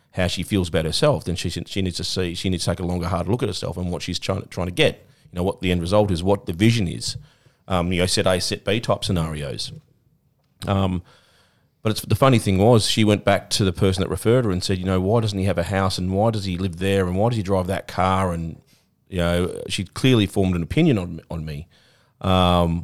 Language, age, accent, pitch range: English, 40-59, Australian, 90-105 Hz